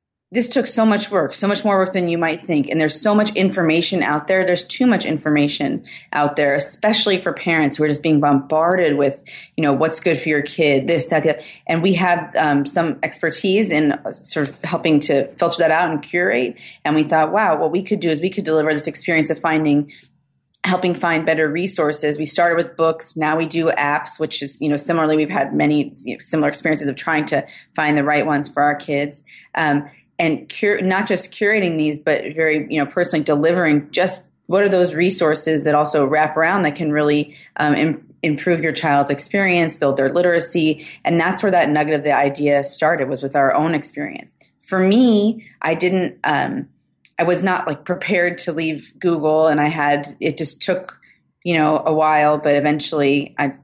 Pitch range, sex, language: 145-175 Hz, female, English